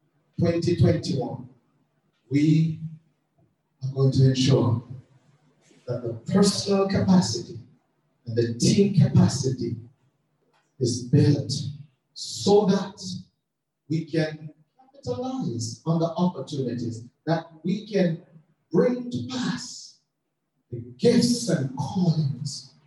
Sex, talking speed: male, 90 wpm